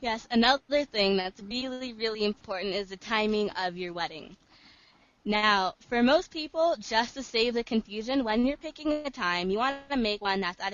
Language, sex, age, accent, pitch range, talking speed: English, female, 20-39, American, 195-255 Hz, 185 wpm